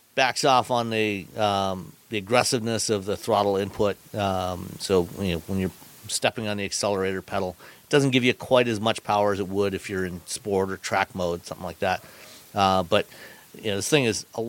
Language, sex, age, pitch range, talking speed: English, male, 40-59, 95-115 Hz, 210 wpm